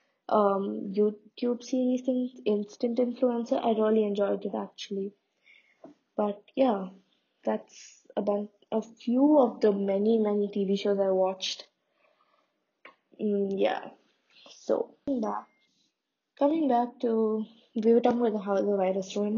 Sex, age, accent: female, 20-39, Indian